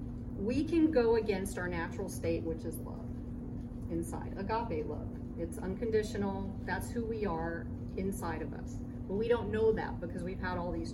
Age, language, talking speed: 40-59, English, 175 wpm